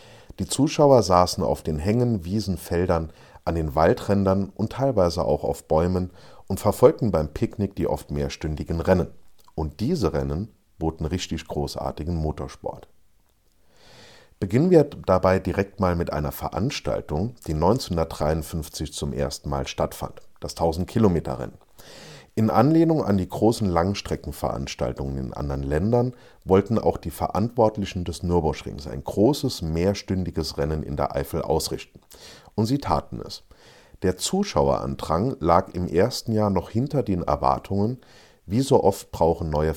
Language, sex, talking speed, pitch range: German, male, 135 wpm, 75-100 Hz